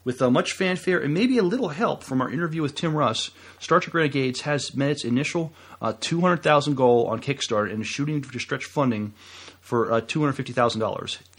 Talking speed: 190 wpm